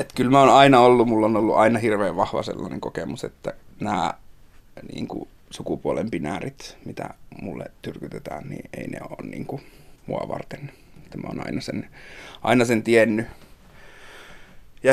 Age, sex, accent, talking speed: 30-49, male, native, 150 wpm